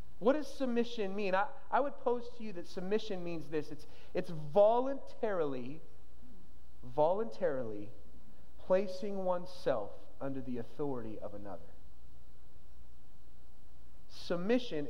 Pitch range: 150-230 Hz